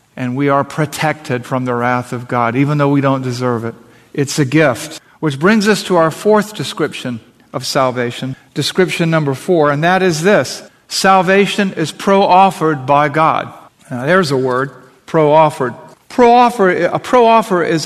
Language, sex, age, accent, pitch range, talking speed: English, male, 50-69, American, 145-185 Hz, 155 wpm